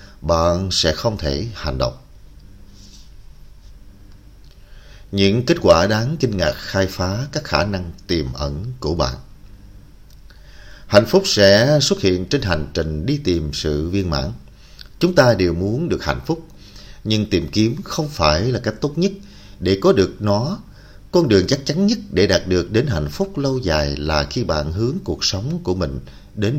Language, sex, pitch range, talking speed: Vietnamese, male, 85-120 Hz, 170 wpm